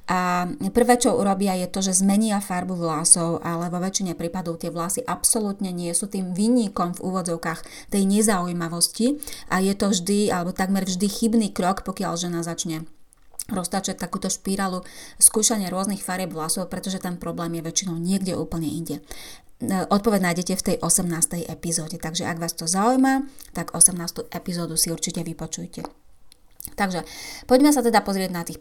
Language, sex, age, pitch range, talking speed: Slovak, female, 30-49, 175-230 Hz, 160 wpm